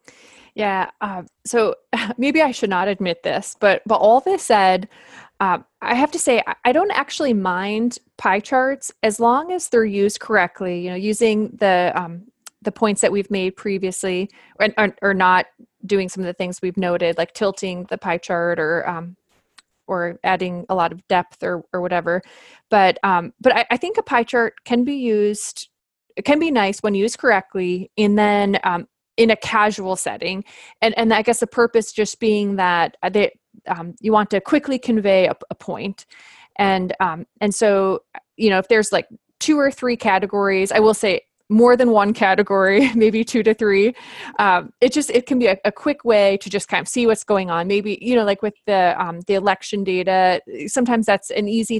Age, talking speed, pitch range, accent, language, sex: 20-39, 200 wpm, 190-240 Hz, American, English, female